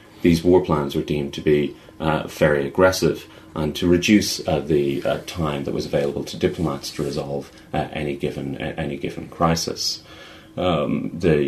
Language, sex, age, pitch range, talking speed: English, male, 30-49, 70-85 Hz, 165 wpm